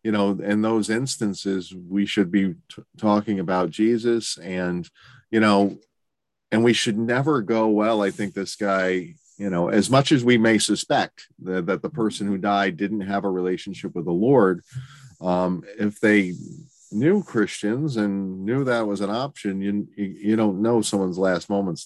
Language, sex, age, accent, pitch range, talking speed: English, male, 40-59, American, 90-110 Hz, 175 wpm